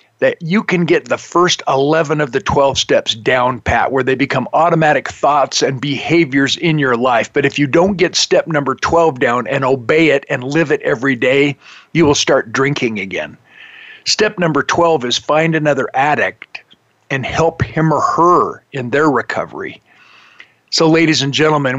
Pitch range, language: 135-165 Hz, English